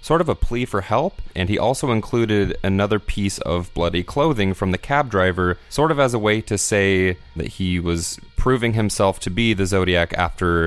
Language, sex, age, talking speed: English, male, 30-49, 200 wpm